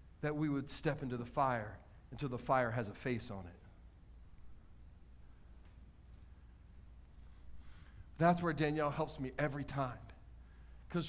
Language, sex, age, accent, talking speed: English, male, 40-59, American, 125 wpm